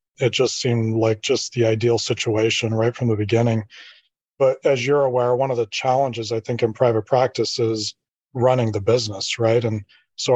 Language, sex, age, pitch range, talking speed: English, male, 20-39, 115-125 Hz, 185 wpm